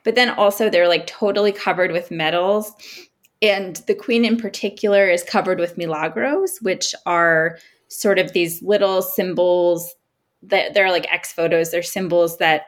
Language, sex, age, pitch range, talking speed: English, female, 20-39, 160-205 Hz, 155 wpm